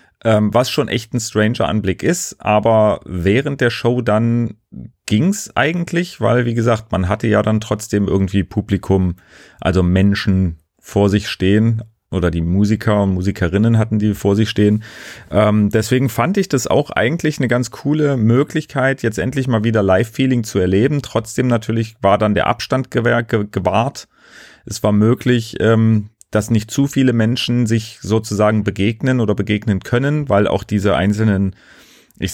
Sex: male